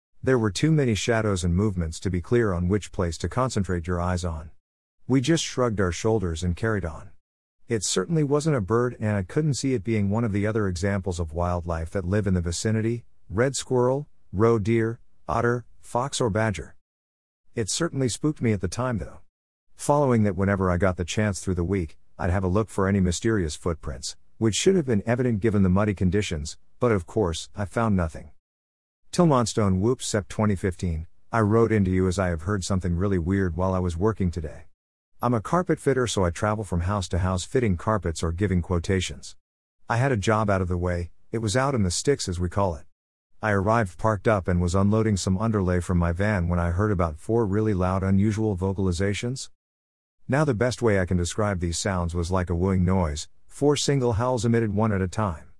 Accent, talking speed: American, 210 wpm